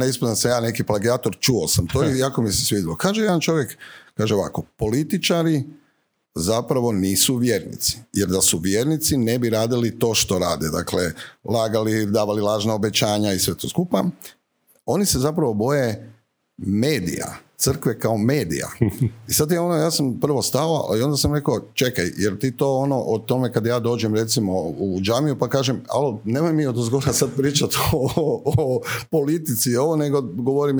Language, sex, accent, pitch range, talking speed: Croatian, male, native, 110-140 Hz, 175 wpm